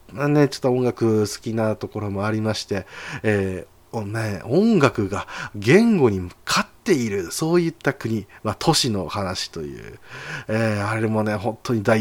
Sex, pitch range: male, 100-140 Hz